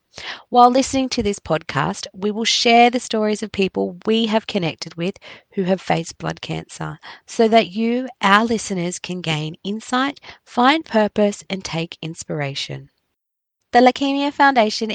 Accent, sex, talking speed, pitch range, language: Australian, female, 150 wpm, 170-230 Hz, English